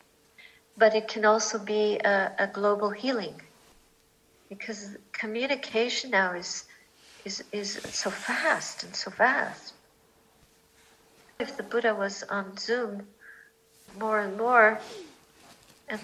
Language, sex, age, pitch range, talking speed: English, female, 50-69, 210-245 Hz, 110 wpm